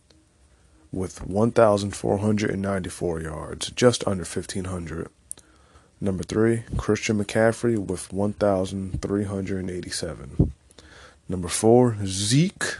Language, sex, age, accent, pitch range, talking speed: English, male, 20-39, American, 85-105 Hz, 55 wpm